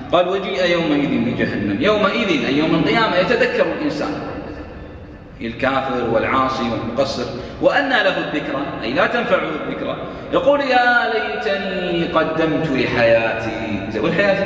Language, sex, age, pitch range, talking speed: Arabic, male, 30-49, 145-245 Hz, 110 wpm